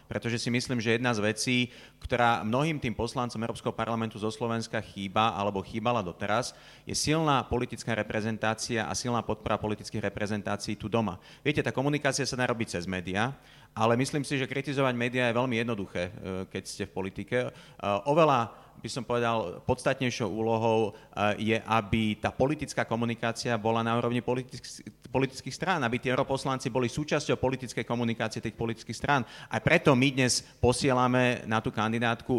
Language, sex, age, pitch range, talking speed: Slovak, male, 40-59, 110-130 Hz, 155 wpm